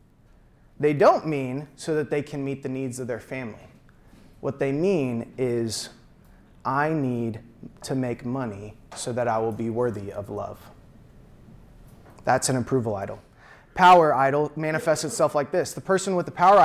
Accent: American